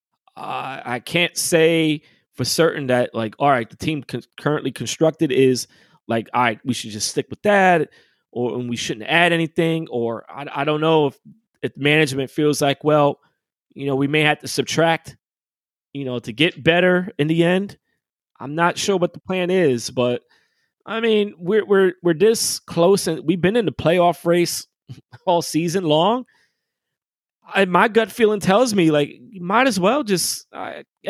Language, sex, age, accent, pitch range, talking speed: English, male, 20-39, American, 145-210 Hz, 180 wpm